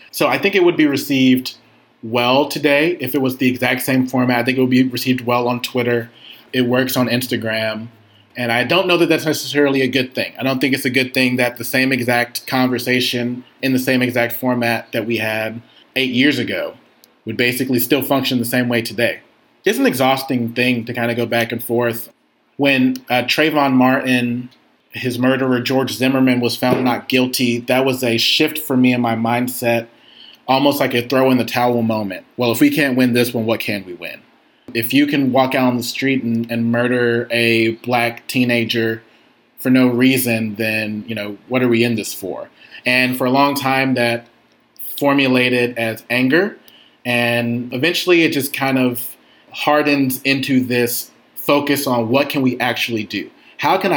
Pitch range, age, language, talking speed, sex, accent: 120-130 Hz, 30-49, English, 190 wpm, male, American